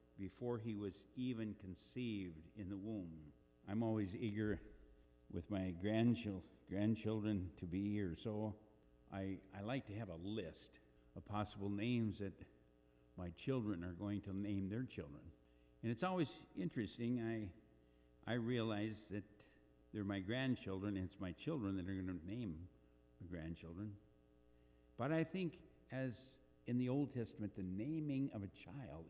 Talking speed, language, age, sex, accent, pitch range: 150 wpm, English, 60-79, male, American, 85-115 Hz